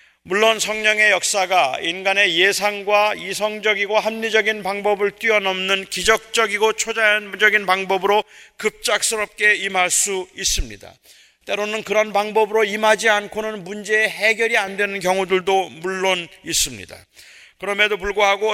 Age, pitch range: 40-59, 200-230 Hz